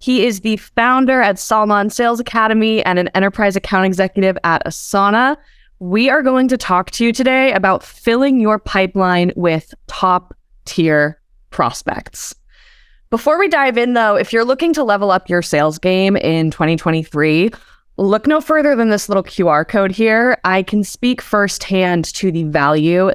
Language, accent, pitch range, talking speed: English, American, 170-235 Hz, 165 wpm